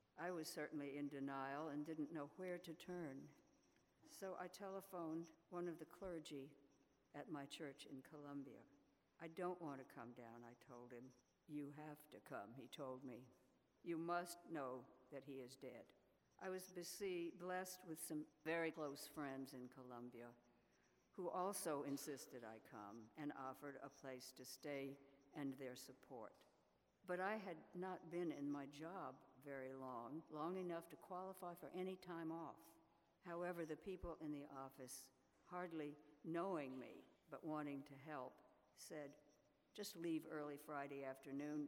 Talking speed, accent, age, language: 155 wpm, American, 60-79, English